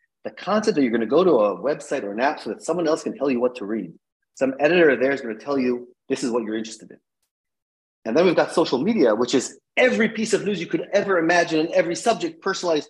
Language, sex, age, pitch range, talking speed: English, male, 30-49, 110-155 Hz, 265 wpm